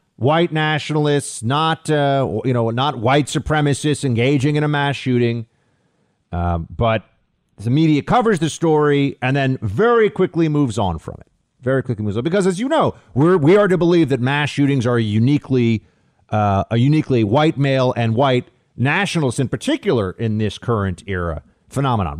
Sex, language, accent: male, English, American